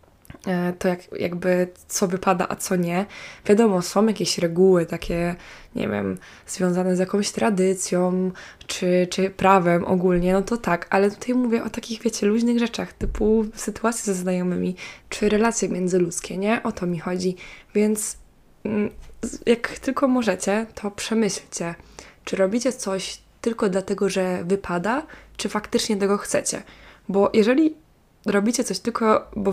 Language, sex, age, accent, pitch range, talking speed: Polish, female, 20-39, native, 185-215 Hz, 140 wpm